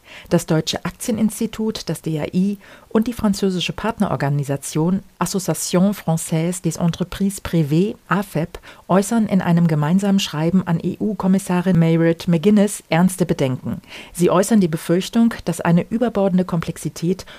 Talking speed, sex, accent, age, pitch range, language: 115 wpm, female, German, 40-59, 165-195 Hz, German